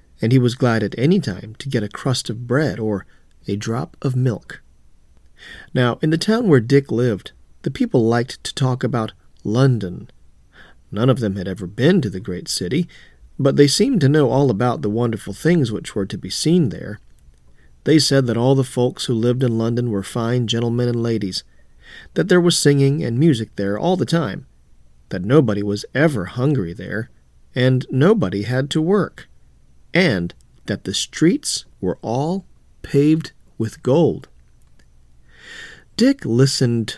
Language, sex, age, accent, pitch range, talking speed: English, male, 40-59, American, 100-140 Hz, 170 wpm